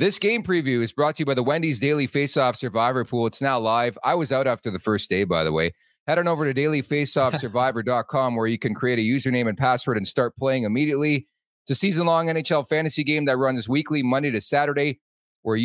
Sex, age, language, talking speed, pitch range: male, 30-49, English, 220 wpm, 110-145 Hz